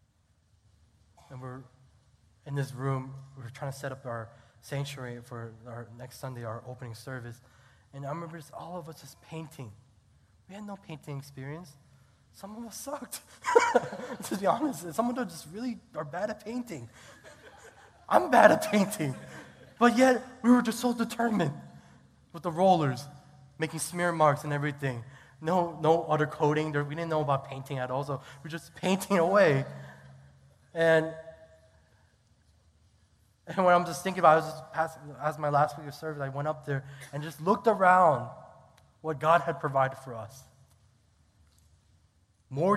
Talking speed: 165 wpm